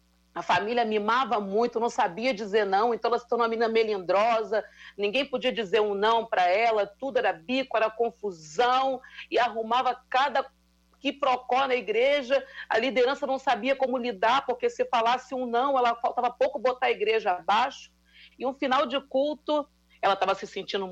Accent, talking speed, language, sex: Brazilian, 175 wpm, Portuguese, female